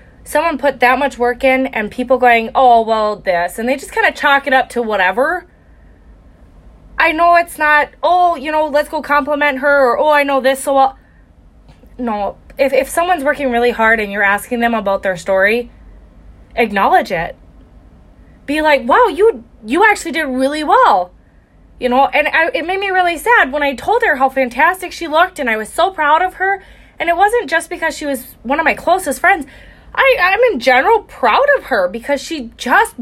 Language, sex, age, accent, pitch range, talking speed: English, female, 20-39, American, 230-325 Hz, 200 wpm